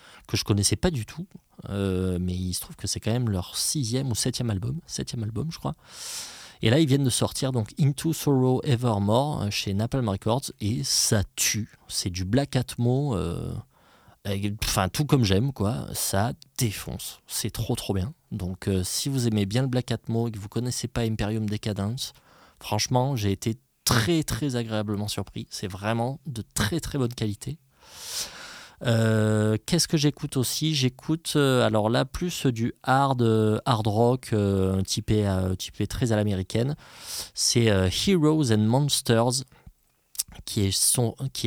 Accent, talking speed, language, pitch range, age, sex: French, 170 wpm, French, 100-130 Hz, 20-39, male